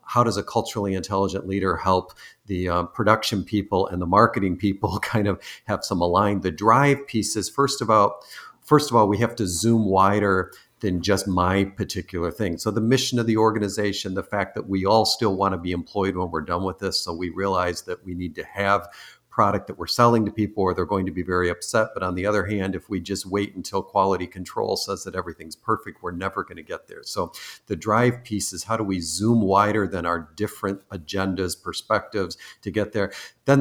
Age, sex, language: 50-69, male, English